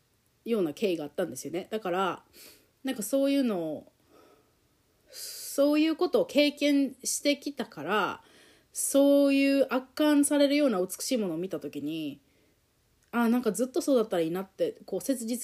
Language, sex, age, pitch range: Japanese, female, 30-49, 175-265 Hz